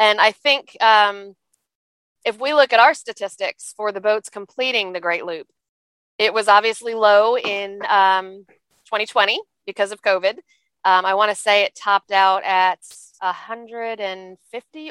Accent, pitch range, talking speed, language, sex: American, 185-225 Hz, 150 wpm, English, female